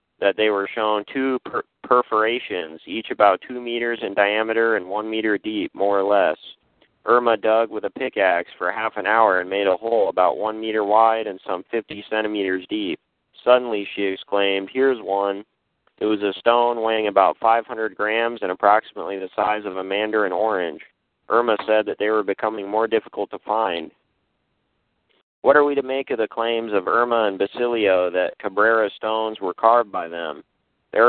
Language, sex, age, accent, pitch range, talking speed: English, male, 40-59, American, 100-115 Hz, 180 wpm